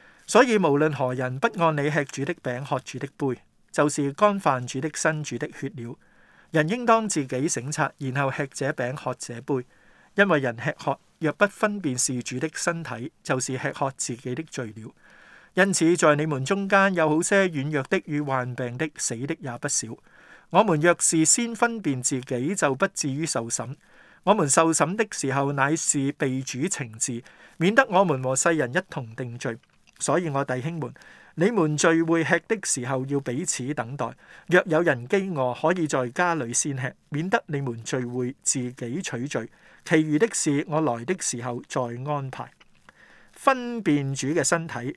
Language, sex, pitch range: Chinese, male, 130-170 Hz